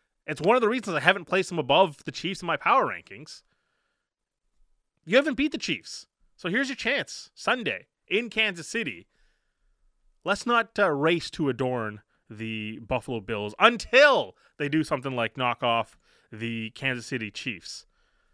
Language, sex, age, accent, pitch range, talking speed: English, male, 20-39, American, 120-175 Hz, 160 wpm